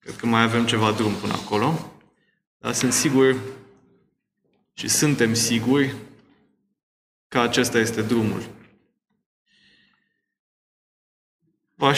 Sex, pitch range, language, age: male, 115-130 Hz, Romanian, 20-39